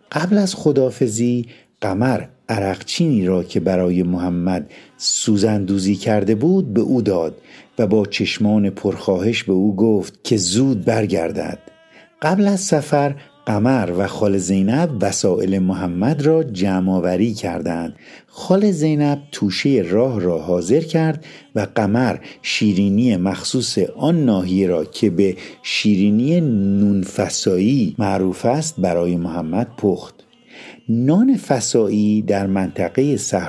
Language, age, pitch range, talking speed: Persian, 50-69, 95-125 Hz, 115 wpm